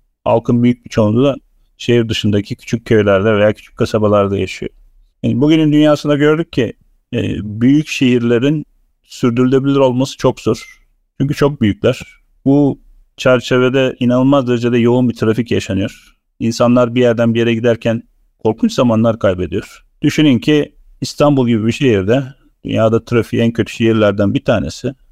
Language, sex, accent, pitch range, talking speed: Turkish, male, native, 110-135 Hz, 135 wpm